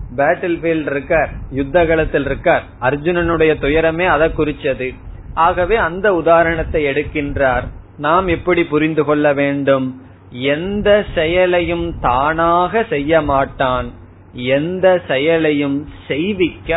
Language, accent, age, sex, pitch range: Tamil, native, 30-49, male, 140-180 Hz